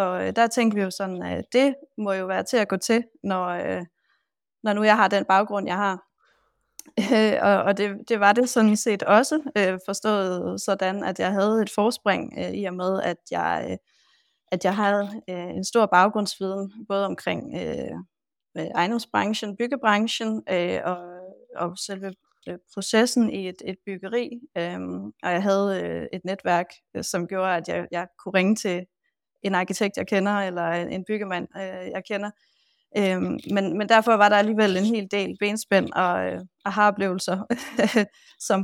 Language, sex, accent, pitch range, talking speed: Danish, female, native, 185-220 Hz, 150 wpm